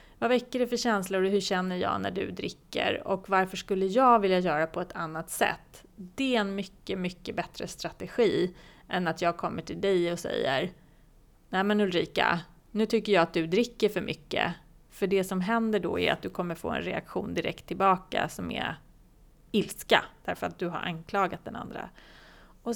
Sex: female